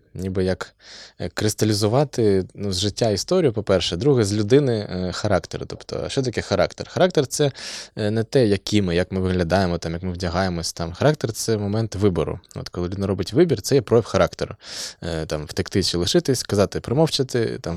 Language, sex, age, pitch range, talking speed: Ukrainian, male, 20-39, 90-115 Hz, 175 wpm